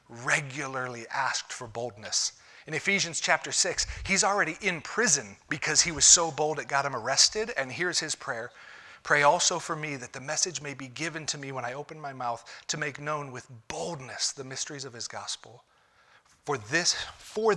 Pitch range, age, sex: 120-155 Hz, 30-49, male